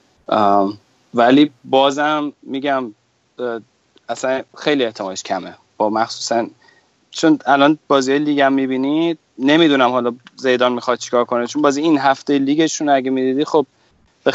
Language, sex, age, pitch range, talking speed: Persian, male, 30-49, 115-135 Hz, 130 wpm